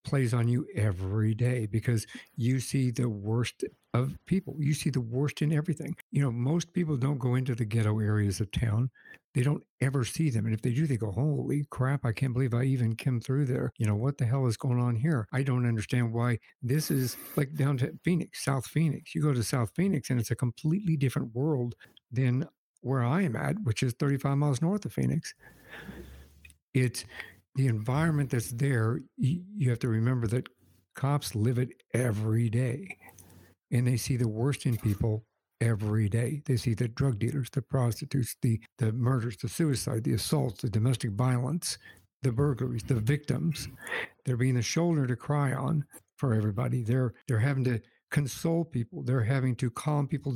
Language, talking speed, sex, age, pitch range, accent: English, 190 wpm, male, 60-79, 115-140 Hz, American